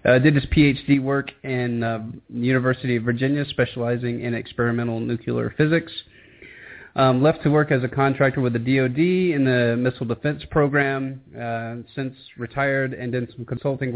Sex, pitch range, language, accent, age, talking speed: male, 115-135 Hz, English, American, 30-49, 160 wpm